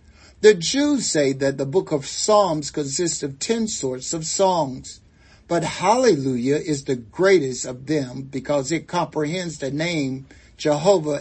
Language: English